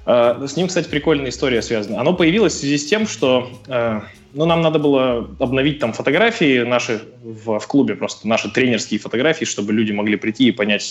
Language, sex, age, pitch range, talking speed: Russian, male, 20-39, 110-140 Hz, 200 wpm